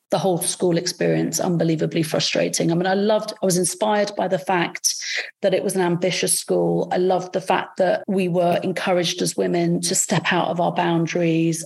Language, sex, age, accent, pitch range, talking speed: English, female, 40-59, British, 175-205 Hz, 195 wpm